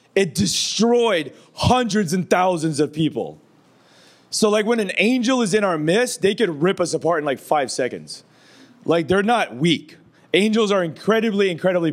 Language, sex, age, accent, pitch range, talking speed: English, male, 30-49, American, 170-210 Hz, 165 wpm